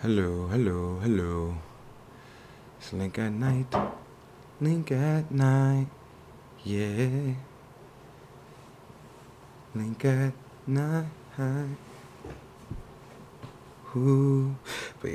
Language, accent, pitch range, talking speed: English, American, 90-120 Hz, 60 wpm